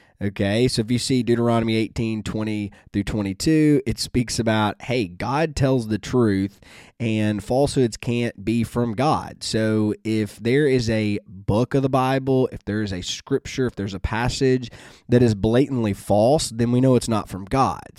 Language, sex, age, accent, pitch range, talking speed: English, male, 20-39, American, 105-130 Hz, 175 wpm